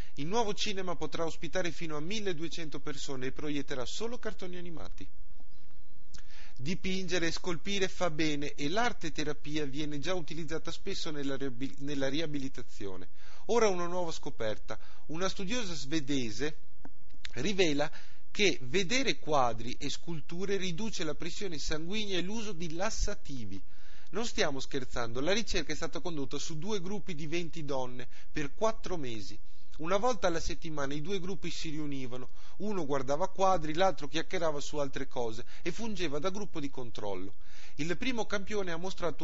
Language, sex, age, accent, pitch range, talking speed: Italian, male, 30-49, native, 135-190 Hz, 145 wpm